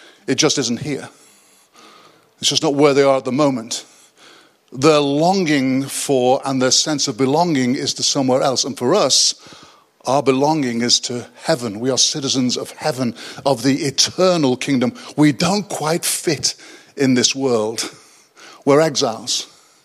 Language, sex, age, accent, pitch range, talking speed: English, male, 50-69, British, 130-160 Hz, 155 wpm